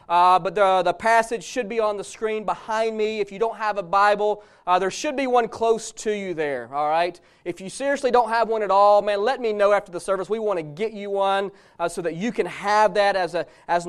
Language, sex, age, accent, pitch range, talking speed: English, male, 30-49, American, 190-250 Hz, 260 wpm